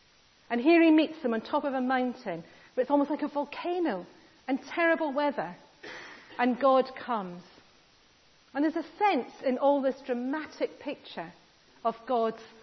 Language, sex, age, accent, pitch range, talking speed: English, female, 40-59, British, 235-300 Hz, 155 wpm